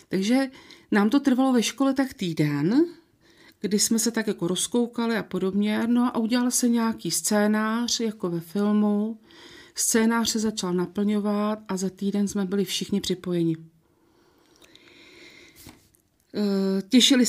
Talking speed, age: 130 wpm, 40-59